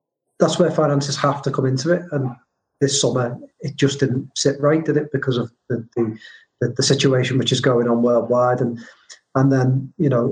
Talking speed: 200 wpm